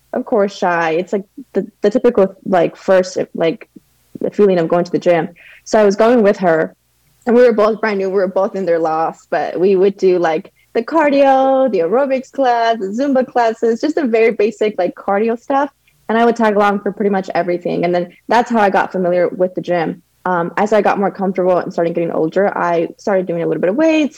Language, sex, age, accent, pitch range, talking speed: English, female, 20-39, American, 175-225 Hz, 230 wpm